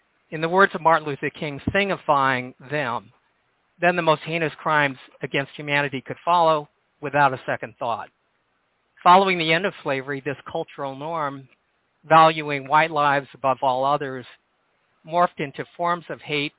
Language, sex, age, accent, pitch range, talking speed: English, male, 50-69, American, 130-160 Hz, 150 wpm